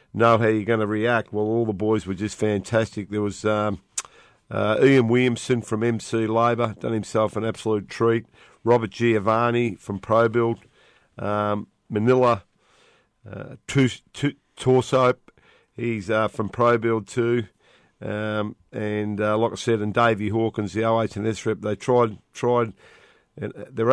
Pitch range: 105-115 Hz